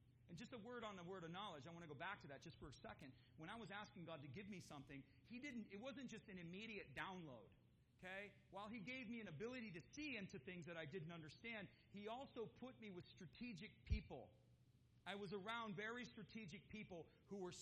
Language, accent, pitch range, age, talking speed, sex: English, American, 165-210 Hz, 40-59, 230 wpm, male